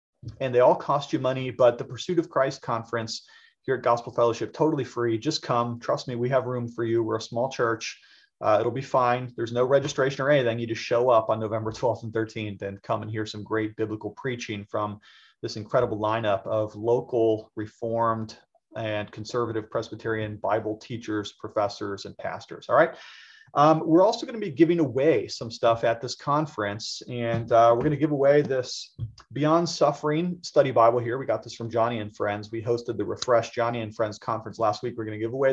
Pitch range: 110-145 Hz